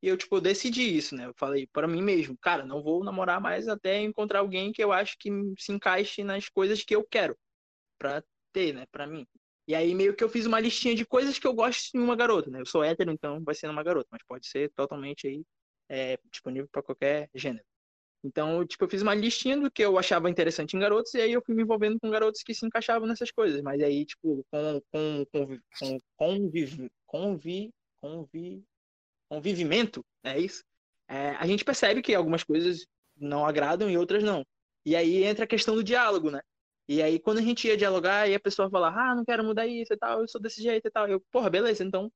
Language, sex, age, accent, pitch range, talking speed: Portuguese, male, 20-39, Brazilian, 150-225 Hz, 225 wpm